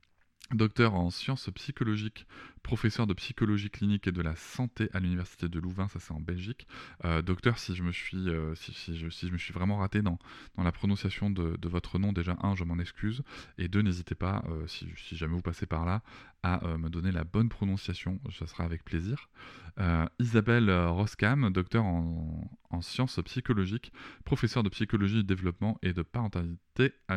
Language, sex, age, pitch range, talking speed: French, male, 20-39, 85-110 Hz, 195 wpm